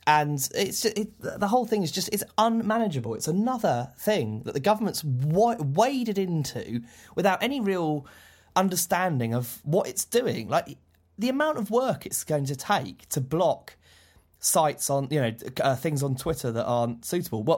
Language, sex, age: English, male, 20-39